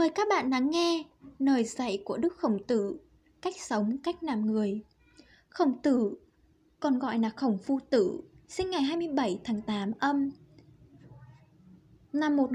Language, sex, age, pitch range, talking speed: Vietnamese, female, 10-29, 225-315 Hz, 155 wpm